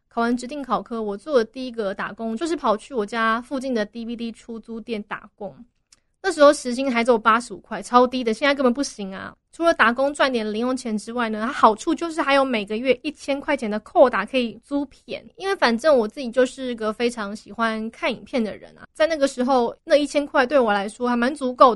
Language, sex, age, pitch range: Chinese, female, 20-39, 225-275 Hz